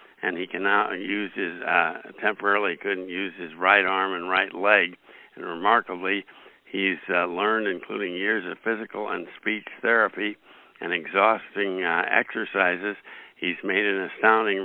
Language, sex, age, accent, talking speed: English, male, 60-79, American, 145 wpm